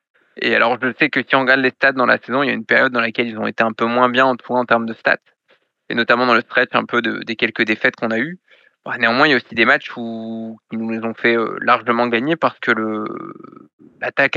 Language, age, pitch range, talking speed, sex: French, 20-39, 115-135 Hz, 270 wpm, male